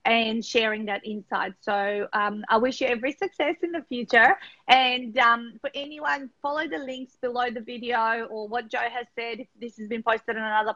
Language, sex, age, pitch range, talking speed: English, female, 30-49, 220-265 Hz, 200 wpm